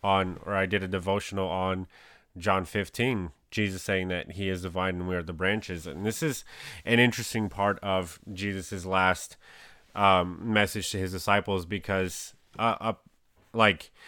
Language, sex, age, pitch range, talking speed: English, male, 30-49, 95-110 Hz, 160 wpm